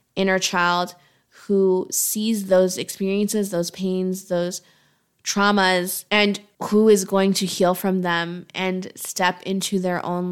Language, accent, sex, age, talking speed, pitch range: English, American, female, 20-39, 135 wpm, 180-195 Hz